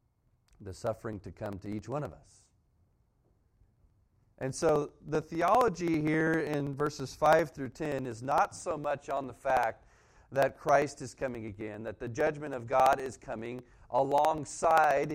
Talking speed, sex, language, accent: 155 wpm, male, English, American